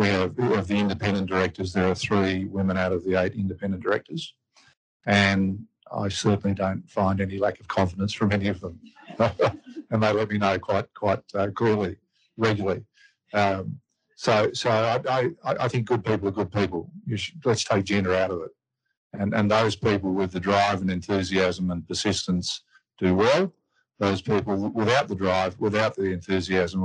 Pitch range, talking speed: 95-105 Hz, 180 wpm